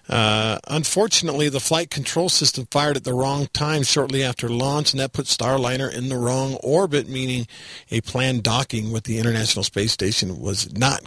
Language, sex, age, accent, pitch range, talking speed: English, male, 50-69, American, 115-150 Hz, 180 wpm